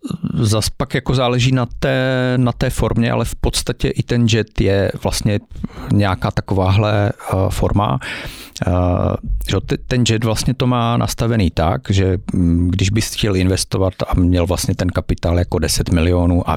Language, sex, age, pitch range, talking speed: Czech, male, 40-59, 90-110 Hz, 150 wpm